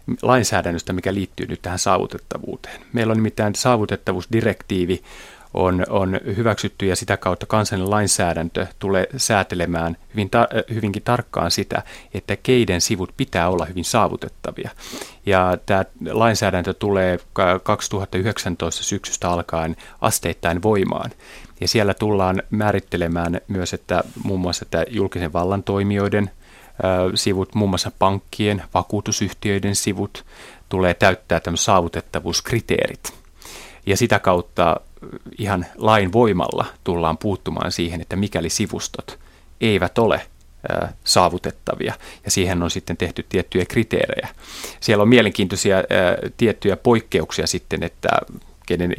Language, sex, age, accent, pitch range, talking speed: Finnish, male, 30-49, native, 90-105 Hz, 115 wpm